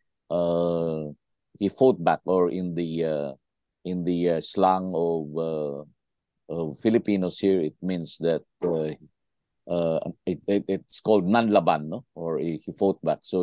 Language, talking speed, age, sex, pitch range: English, 145 wpm, 50-69, male, 80-100 Hz